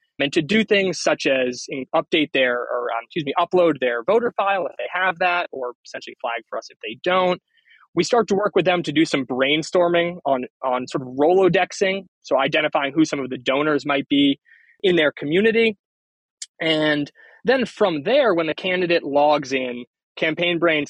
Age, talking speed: 20-39, 190 wpm